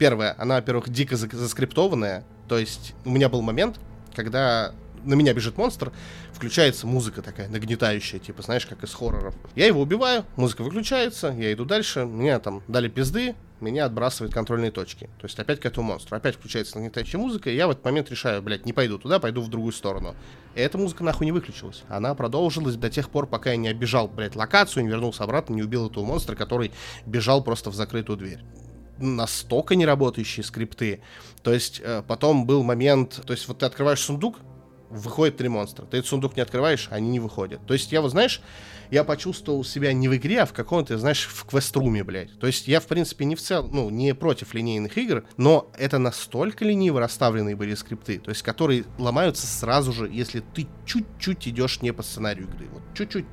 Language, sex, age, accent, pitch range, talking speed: Russian, male, 20-39, native, 110-140 Hz, 195 wpm